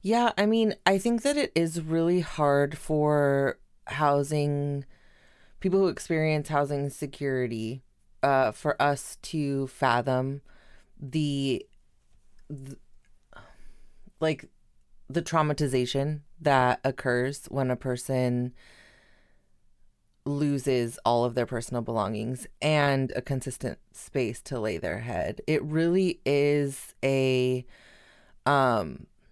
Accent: American